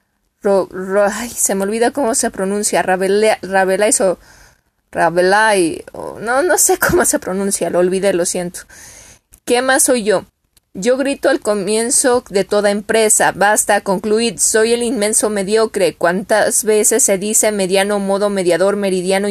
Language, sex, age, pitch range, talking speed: Spanish, female, 20-39, 195-230 Hz, 135 wpm